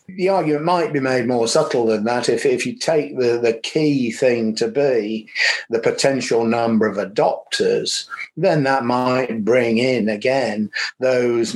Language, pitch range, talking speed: English, 110-135 Hz, 160 wpm